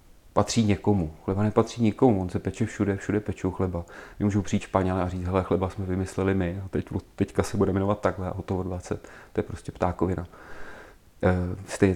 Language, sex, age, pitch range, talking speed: Czech, male, 40-59, 95-105 Hz, 195 wpm